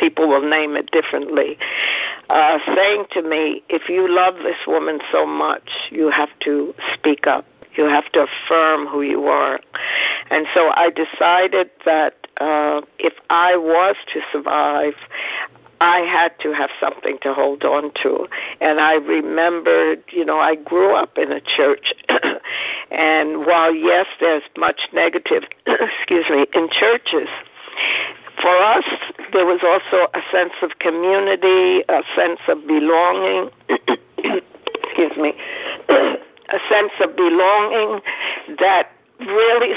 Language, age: English, 60-79